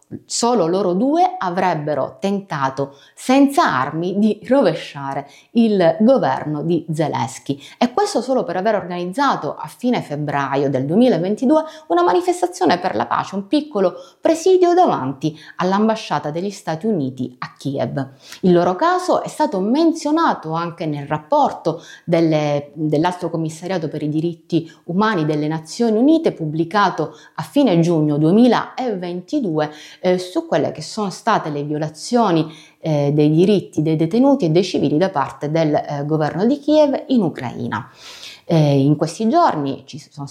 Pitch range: 150-240 Hz